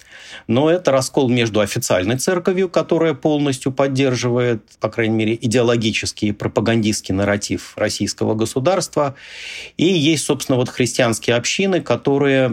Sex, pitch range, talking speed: male, 105-135 Hz, 115 wpm